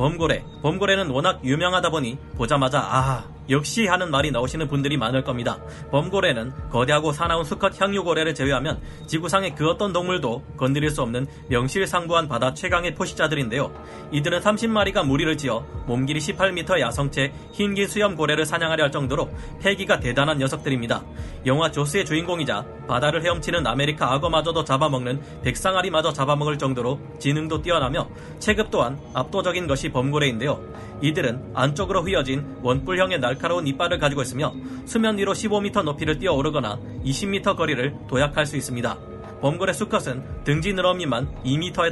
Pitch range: 130-180 Hz